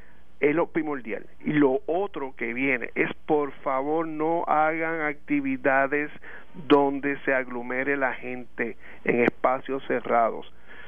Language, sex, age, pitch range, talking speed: Spanish, male, 50-69, 130-160 Hz, 120 wpm